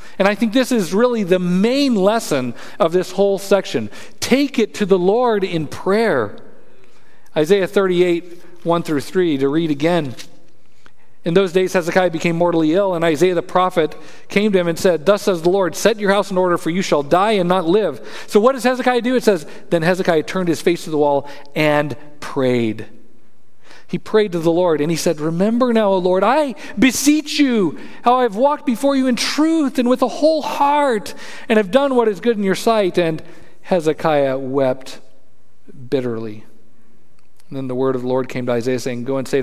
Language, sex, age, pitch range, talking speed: English, male, 50-69, 130-205 Hz, 200 wpm